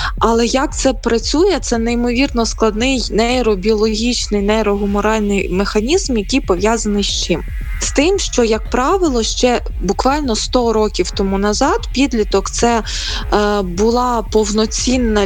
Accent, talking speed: native, 120 wpm